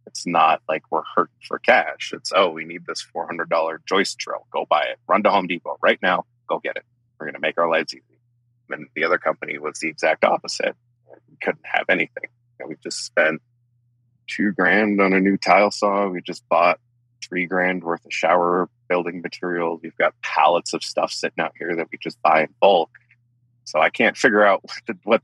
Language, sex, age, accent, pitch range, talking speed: English, male, 30-49, American, 90-120 Hz, 205 wpm